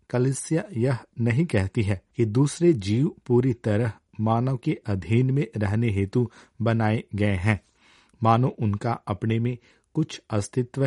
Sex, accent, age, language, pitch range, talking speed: male, native, 50-69, Hindi, 105-130 Hz, 140 wpm